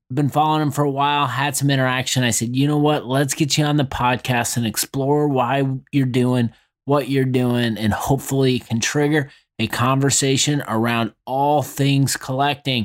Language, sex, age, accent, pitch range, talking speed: English, male, 30-49, American, 125-150 Hz, 185 wpm